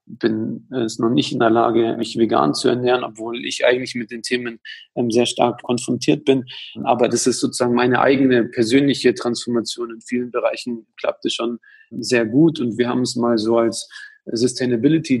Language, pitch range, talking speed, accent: German, 115-125 Hz, 175 wpm, German